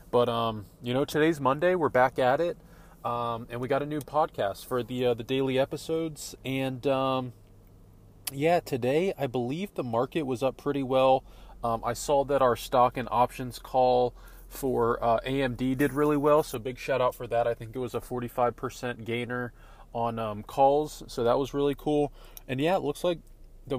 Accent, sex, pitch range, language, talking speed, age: American, male, 115-140 Hz, English, 195 wpm, 20-39